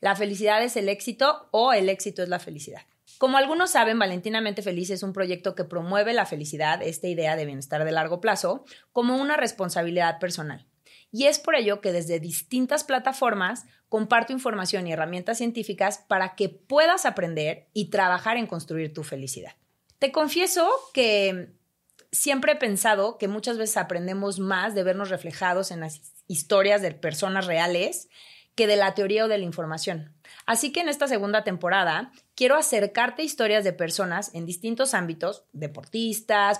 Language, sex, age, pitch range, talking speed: Spanish, female, 30-49, 180-240 Hz, 165 wpm